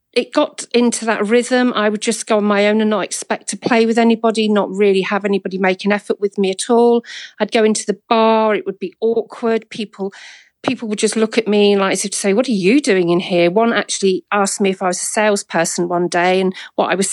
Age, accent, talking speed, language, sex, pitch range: 40-59, British, 250 wpm, English, female, 190-225 Hz